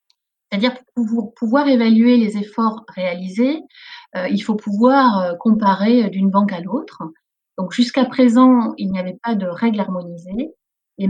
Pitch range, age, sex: 200-250 Hz, 30-49, female